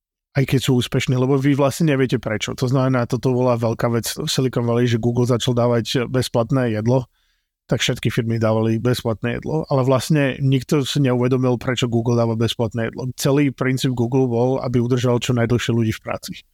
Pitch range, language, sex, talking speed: 120-135 Hz, Slovak, male, 180 wpm